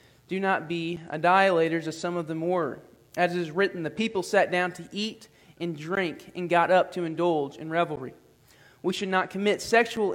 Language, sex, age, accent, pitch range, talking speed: English, male, 20-39, American, 155-200 Hz, 195 wpm